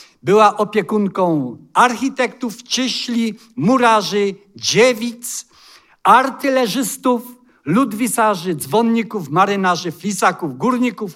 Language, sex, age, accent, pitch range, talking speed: Polish, male, 50-69, native, 185-230 Hz, 65 wpm